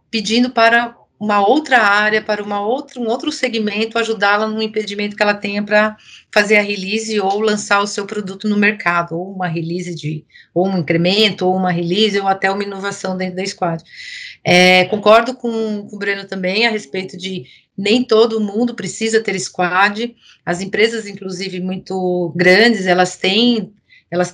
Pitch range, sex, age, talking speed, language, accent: 180-215 Hz, female, 40-59, 160 wpm, Portuguese, Brazilian